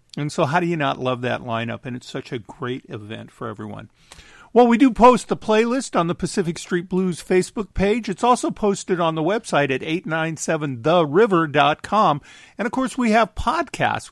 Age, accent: 50-69, American